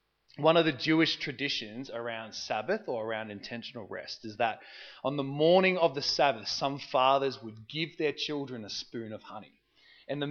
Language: English